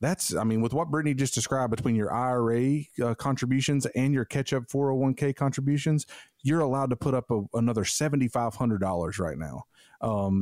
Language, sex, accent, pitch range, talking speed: English, male, American, 110-145 Hz, 160 wpm